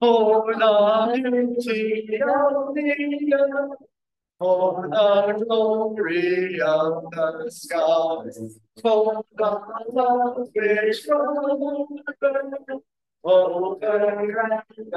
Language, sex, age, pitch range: English, male, 40-59, 200-270 Hz